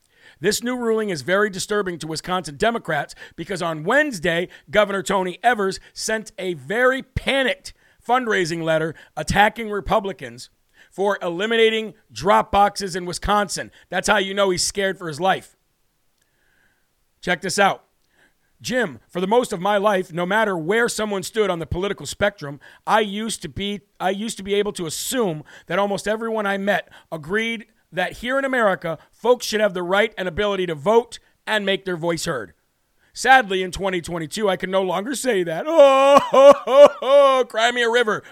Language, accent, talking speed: English, American, 165 wpm